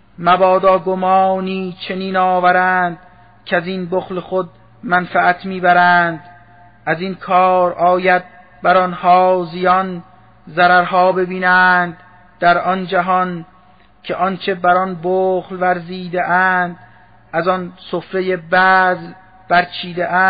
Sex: male